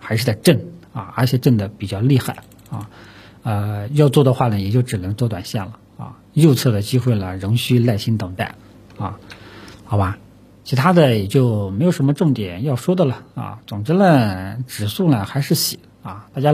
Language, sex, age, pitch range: Chinese, male, 50-69, 105-140 Hz